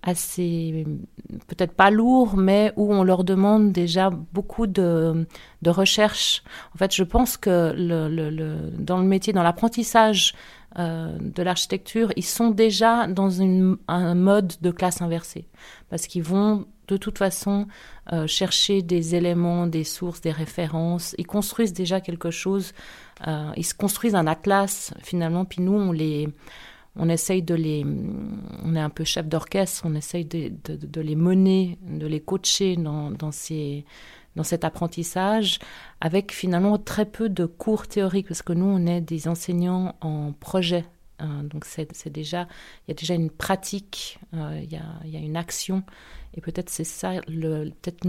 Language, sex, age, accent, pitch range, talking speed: French, female, 40-59, French, 165-195 Hz, 170 wpm